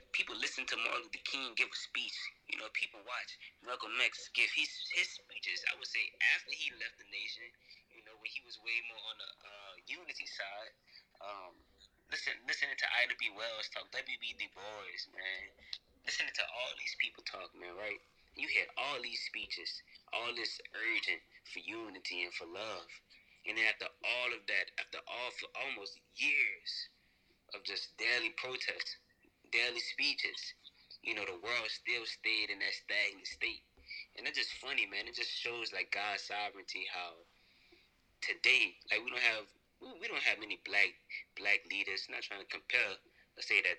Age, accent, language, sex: 20-39, American, English, male